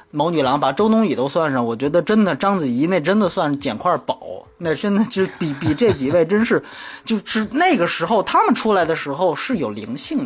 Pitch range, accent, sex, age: 170-255 Hz, native, male, 30-49